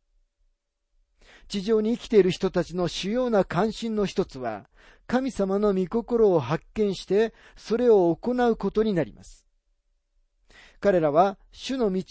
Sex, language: male, Japanese